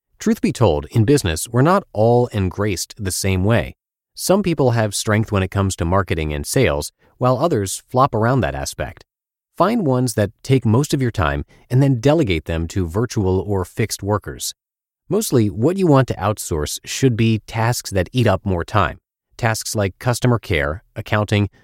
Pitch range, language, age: 90-130 Hz, English, 30-49